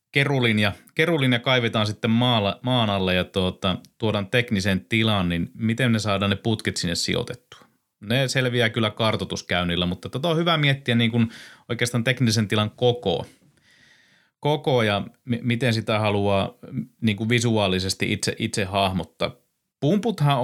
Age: 30-49